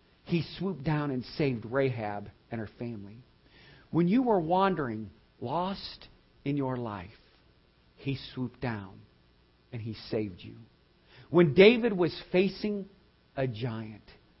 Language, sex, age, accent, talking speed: English, male, 50-69, American, 125 wpm